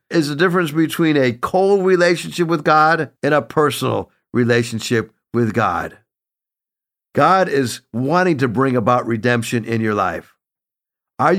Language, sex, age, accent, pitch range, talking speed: English, male, 50-69, American, 130-175 Hz, 135 wpm